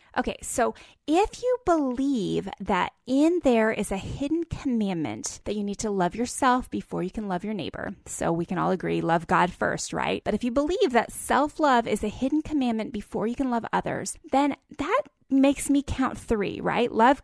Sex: female